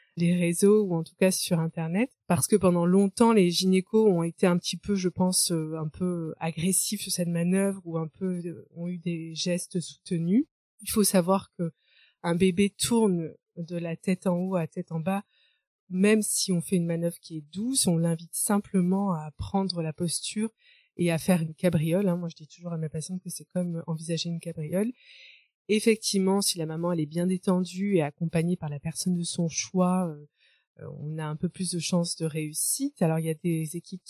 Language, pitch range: French, 165-195 Hz